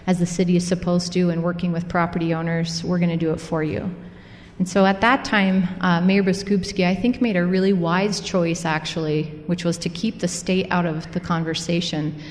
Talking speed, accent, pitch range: 215 wpm, American, 170-190 Hz